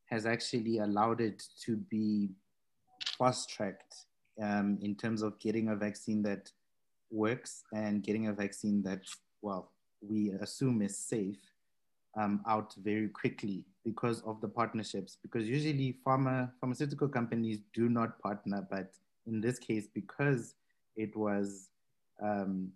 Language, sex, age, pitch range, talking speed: English, male, 20-39, 105-120 Hz, 130 wpm